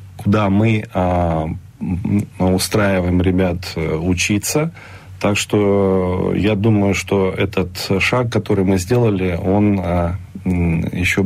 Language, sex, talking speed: Russian, male, 90 wpm